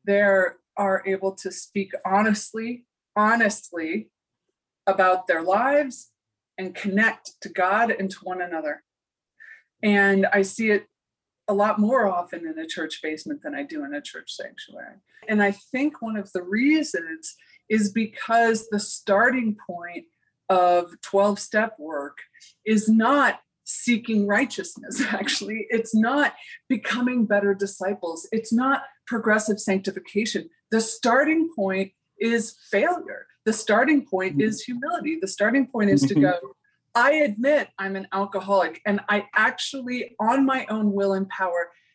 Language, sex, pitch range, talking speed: English, female, 195-250 Hz, 135 wpm